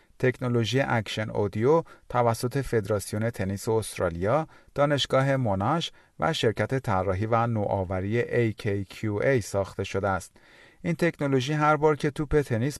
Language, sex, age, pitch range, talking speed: Persian, male, 40-59, 100-140 Hz, 115 wpm